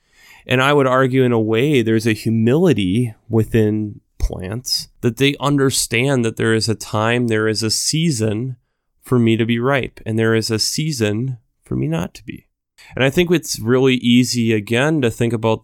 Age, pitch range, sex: 20-39, 110-130 Hz, male